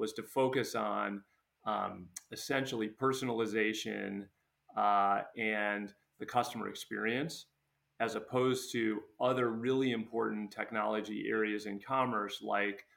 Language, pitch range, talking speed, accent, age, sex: English, 105-125 Hz, 105 wpm, American, 30-49, male